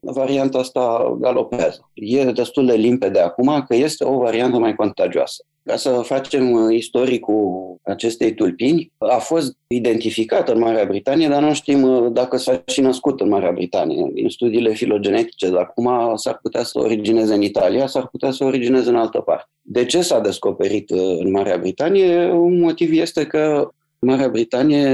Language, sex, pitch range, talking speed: Romanian, male, 115-155 Hz, 160 wpm